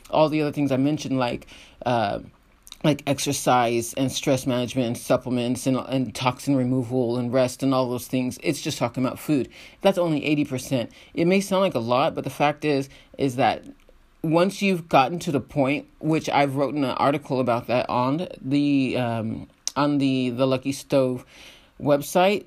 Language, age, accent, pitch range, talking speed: English, 30-49, American, 130-160 Hz, 180 wpm